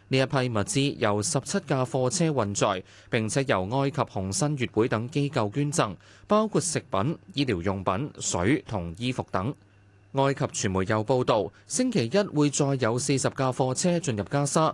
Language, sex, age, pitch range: Chinese, male, 20-39, 105-145 Hz